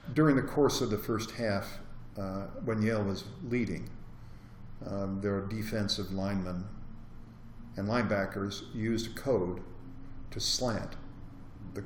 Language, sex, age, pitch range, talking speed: English, male, 50-69, 100-125 Hz, 120 wpm